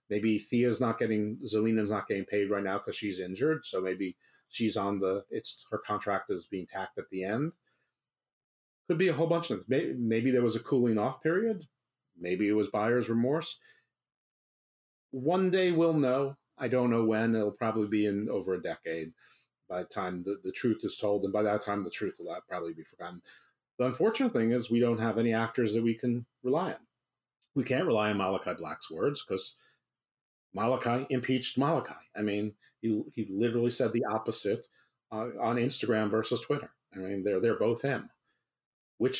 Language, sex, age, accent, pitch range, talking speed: English, male, 40-59, American, 100-125 Hz, 190 wpm